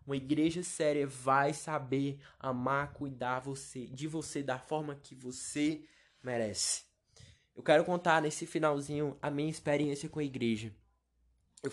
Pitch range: 125-150 Hz